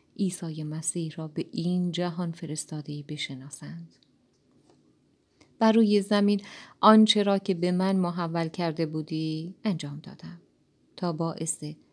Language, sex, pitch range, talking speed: Persian, female, 155-185 Hz, 110 wpm